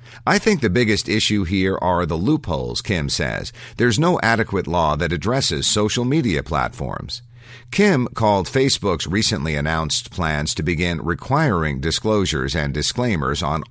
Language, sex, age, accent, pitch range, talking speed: English, male, 50-69, American, 80-120 Hz, 145 wpm